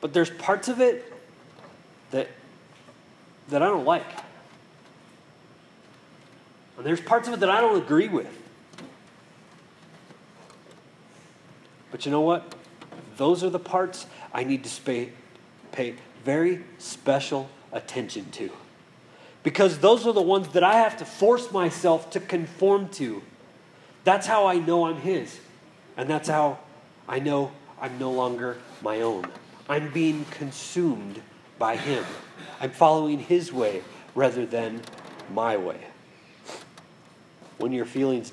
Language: English